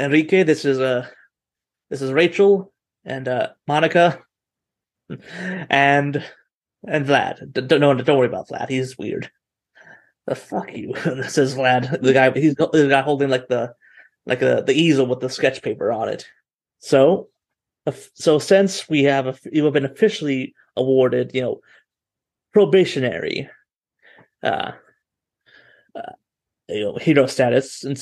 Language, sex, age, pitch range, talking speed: English, male, 30-49, 130-160 Hz, 145 wpm